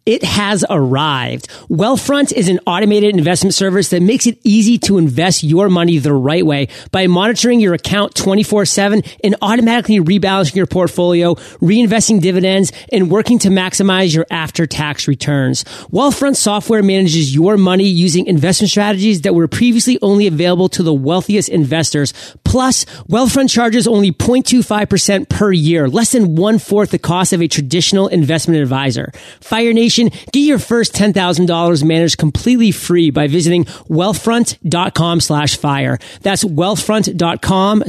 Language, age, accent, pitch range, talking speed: English, 30-49, American, 165-210 Hz, 140 wpm